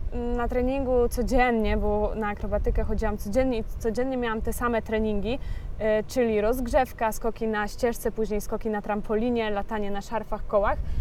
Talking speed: 145 wpm